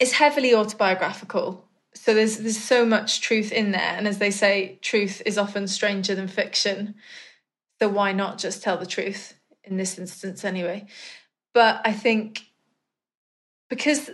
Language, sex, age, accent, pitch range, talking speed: English, female, 20-39, British, 190-220 Hz, 155 wpm